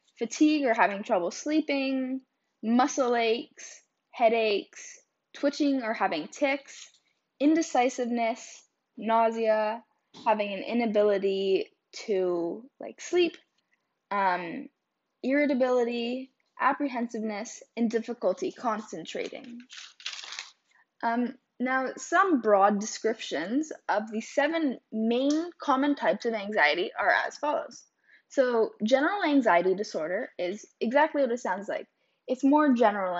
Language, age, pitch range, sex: English, 10-29, 210-280 Hz, female